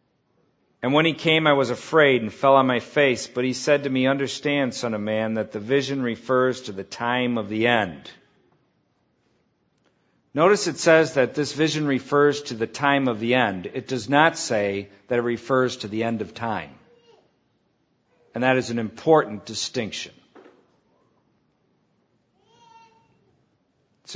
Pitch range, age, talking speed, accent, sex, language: 120-150 Hz, 50-69, 155 wpm, American, male, English